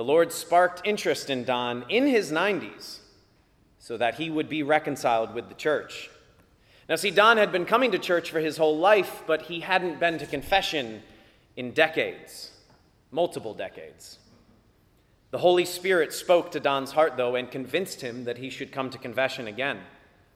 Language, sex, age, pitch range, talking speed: English, male, 30-49, 130-185 Hz, 170 wpm